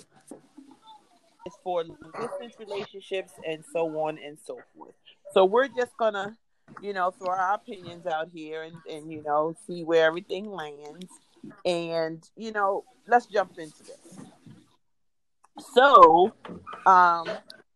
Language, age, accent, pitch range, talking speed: English, 40-59, American, 170-245 Hz, 130 wpm